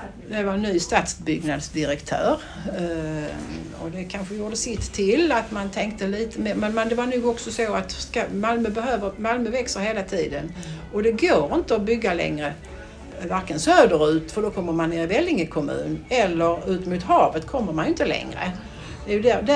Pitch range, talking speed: 160-215 Hz, 165 wpm